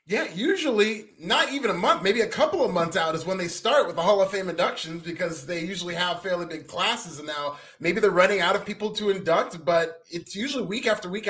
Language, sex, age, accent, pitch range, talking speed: English, male, 30-49, American, 170-220 Hz, 240 wpm